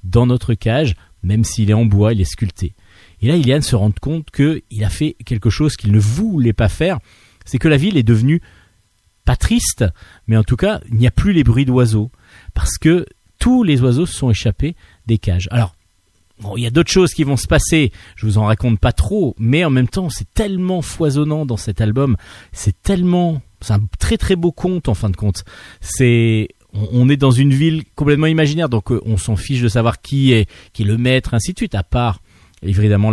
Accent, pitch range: French, 100-140 Hz